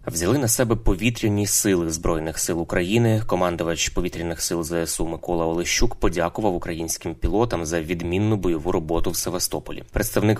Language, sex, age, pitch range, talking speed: Ukrainian, male, 20-39, 85-105 Hz, 140 wpm